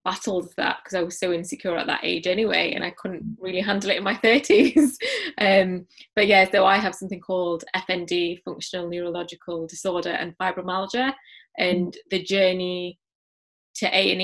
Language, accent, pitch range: English, British, 180-205 Hz